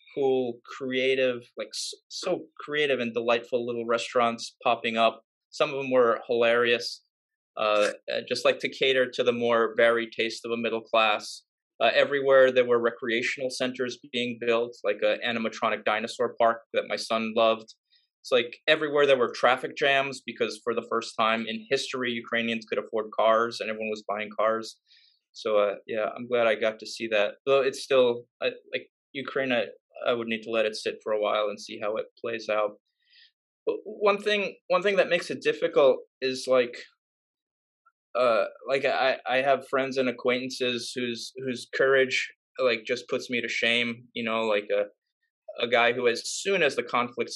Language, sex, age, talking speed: English, male, 20-39, 180 wpm